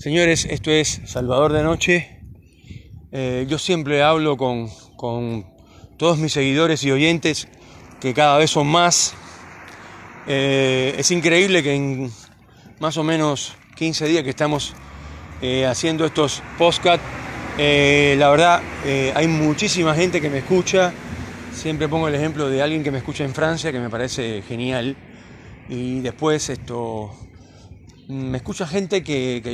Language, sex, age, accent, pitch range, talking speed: Spanish, male, 30-49, Argentinian, 120-155 Hz, 140 wpm